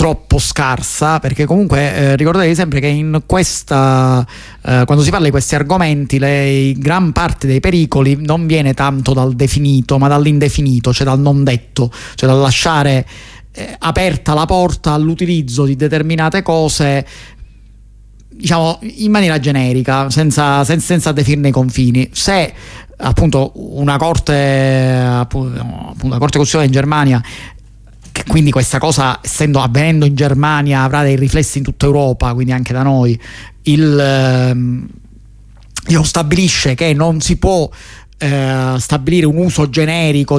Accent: native